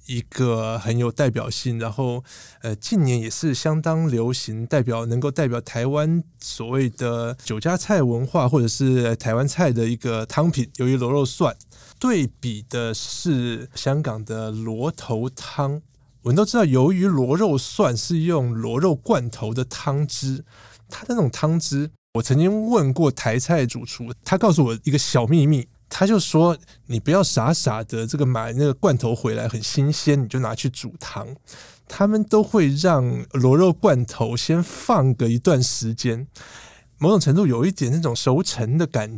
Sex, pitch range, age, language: male, 120-155 Hz, 20-39, Chinese